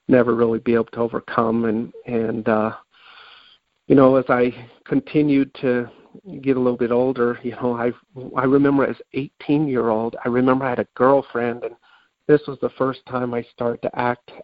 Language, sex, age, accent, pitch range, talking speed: English, male, 50-69, American, 115-135 Hz, 185 wpm